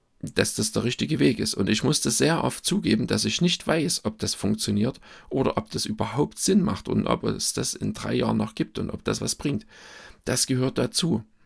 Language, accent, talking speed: German, German, 220 wpm